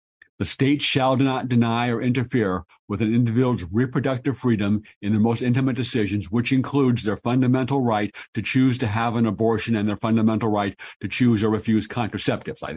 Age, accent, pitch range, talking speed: 60-79, American, 110-145 Hz, 175 wpm